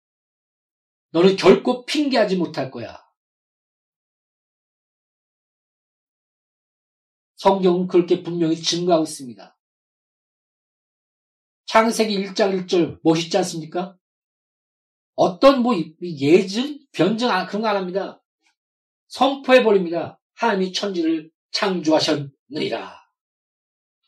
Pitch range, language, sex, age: 155-235 Hz, Korean, male, 40-59